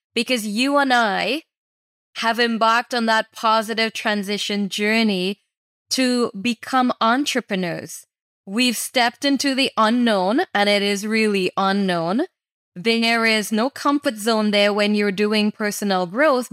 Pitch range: 210-245 Hz